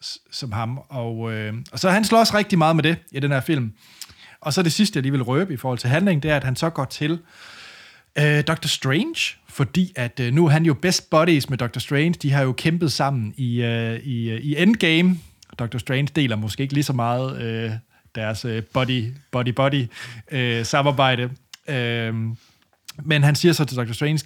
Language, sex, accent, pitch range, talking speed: Danish, male, native, 120-155 Hz, 210 wpm